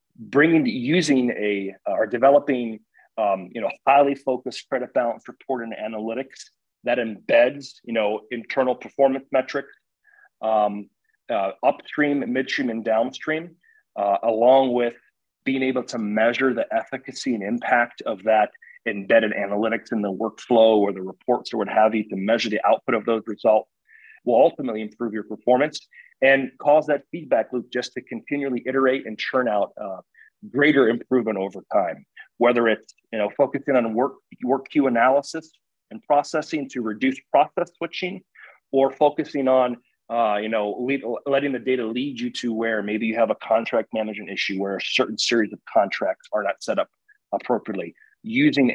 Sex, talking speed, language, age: male, 160 wpm, English, 30-49